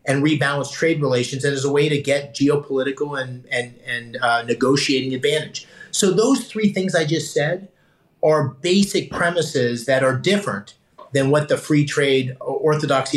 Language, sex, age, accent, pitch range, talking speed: English, male, 30-49, American, 130-160 Hz, 155 wpm